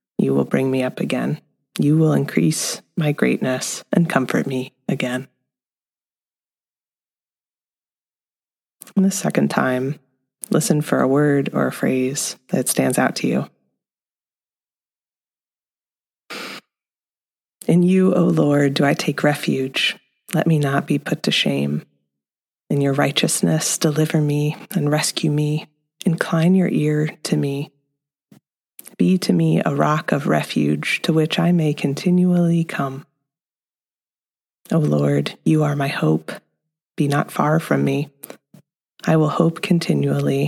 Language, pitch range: English, 140-160 Hz